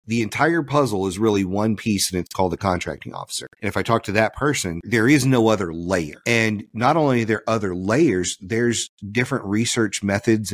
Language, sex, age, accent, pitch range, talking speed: English, male, 40-59, American, 95-120 Hz, 205 wpm